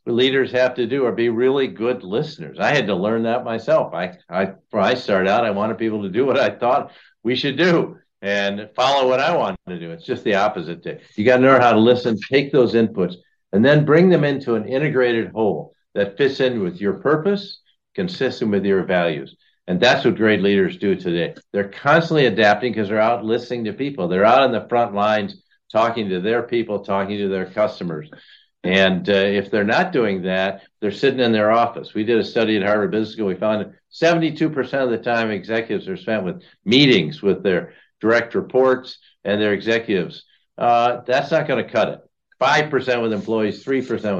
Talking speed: 205 wpm